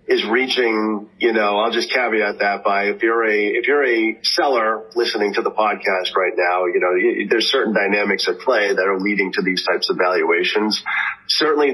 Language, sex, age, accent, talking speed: English, male, 40-59, American, 200 wpm